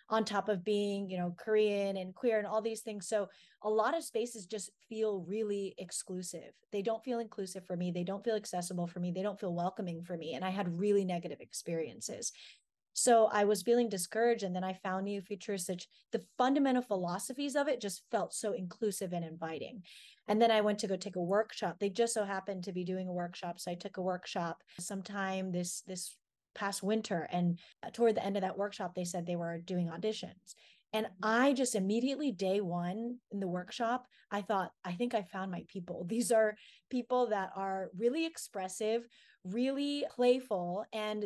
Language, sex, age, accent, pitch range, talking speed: English, female, 20-39, American, 185-225 Hz, 200 wpm